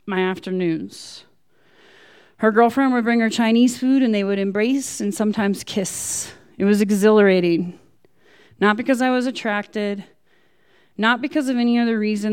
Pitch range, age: 185-230 Hz, 20-39